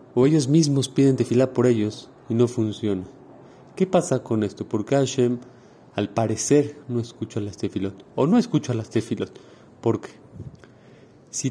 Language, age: Spanish, 30-49